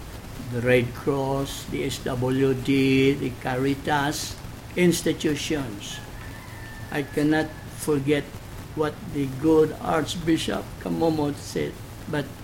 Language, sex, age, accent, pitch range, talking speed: English, male, 60-79, Filipino, 115-150 Hz, 85 wpm